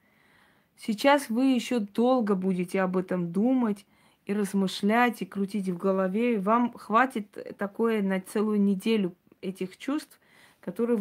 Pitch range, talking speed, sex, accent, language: 190-230 Hz, 125 wpm, female, native, Russian